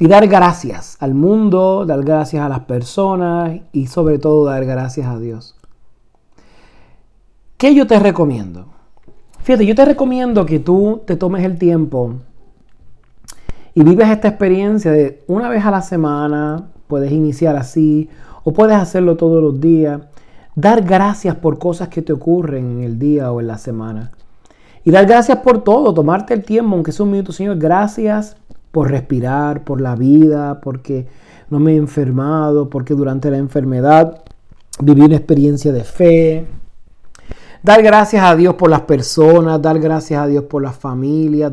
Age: 40-59